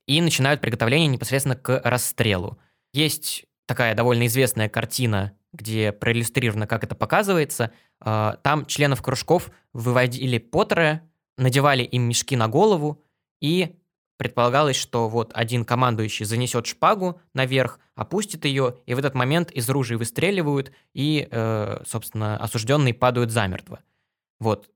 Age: 20-39